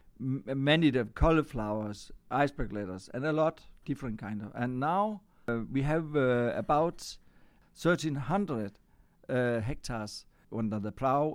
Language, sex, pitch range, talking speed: French, male, 115-155 Hz, 130 wpm